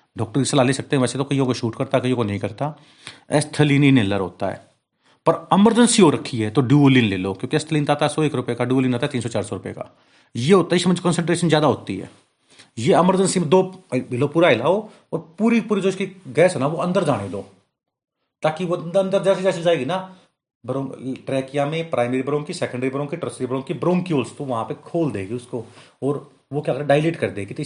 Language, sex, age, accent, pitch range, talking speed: Hindi, male, 30-49, native, 115-155 Hz, 210 wpm